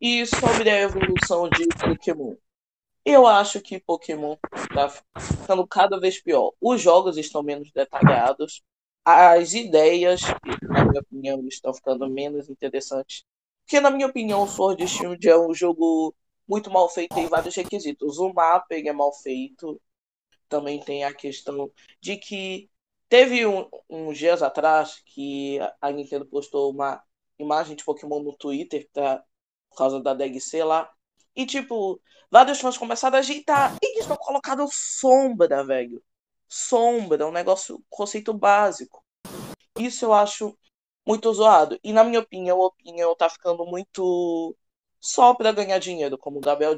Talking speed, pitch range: 150 wpm, 150-225 Hz